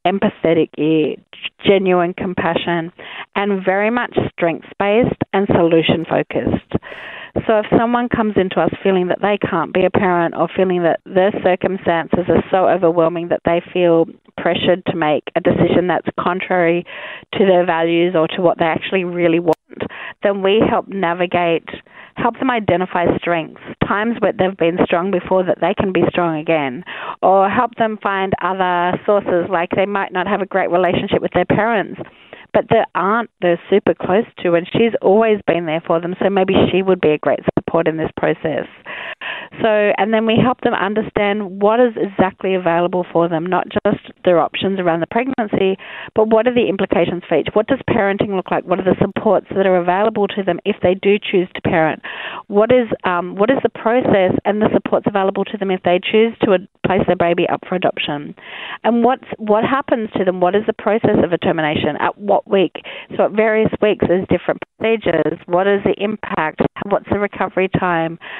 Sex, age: female, 40-59